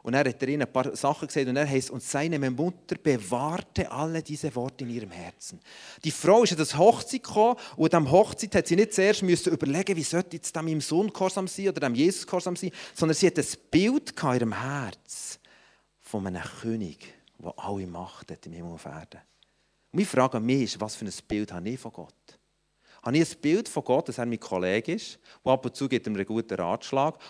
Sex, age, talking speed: male, 40-59, 210 wpm